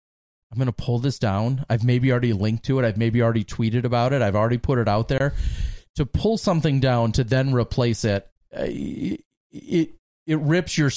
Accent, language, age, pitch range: American, English, 30-49, 110-135 Hz